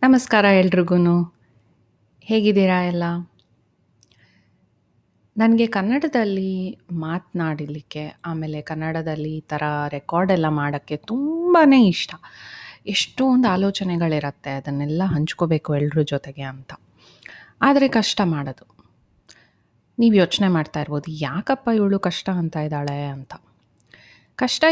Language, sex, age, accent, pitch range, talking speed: Kannada, female, 30-49, native, 155-225 Hz, 90 wpm